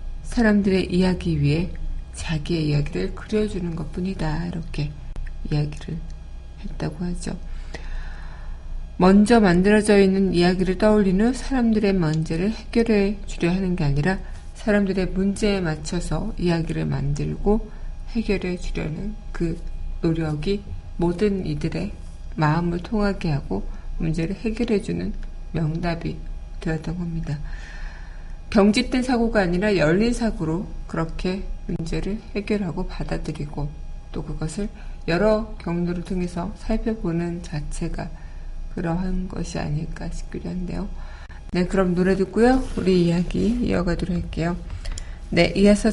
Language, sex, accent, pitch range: Korean, female, native, 155-200 Hz